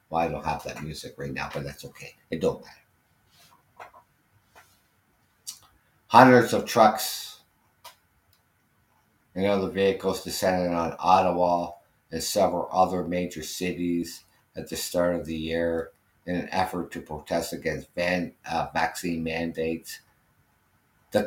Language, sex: English, male